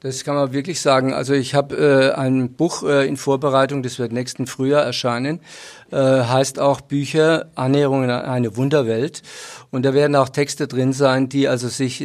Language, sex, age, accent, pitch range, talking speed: German, male, 50-69, German, 130-145 Hz, 185 wpm